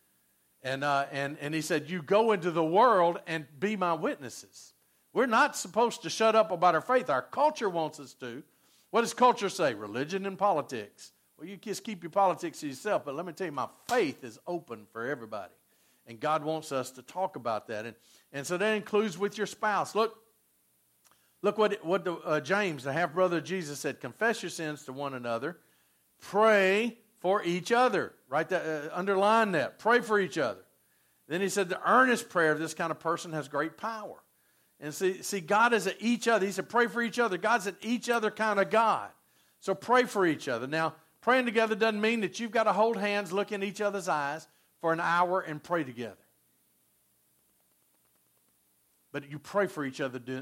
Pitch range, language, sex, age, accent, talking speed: 140-205 Hz, English, male, 50-69, American, 205 wpm